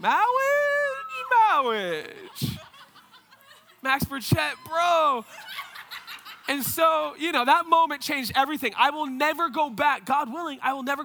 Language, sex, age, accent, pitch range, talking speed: English, male, 20-39, American, 225-335 Hz, 125 wpm